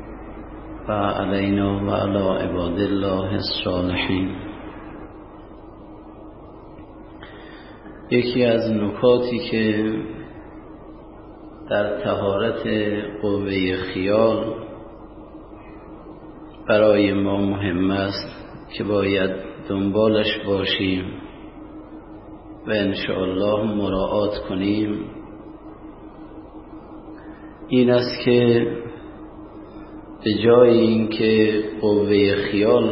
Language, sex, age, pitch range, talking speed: Persian, male, 50-69, 100-110 Hz, 60 wpm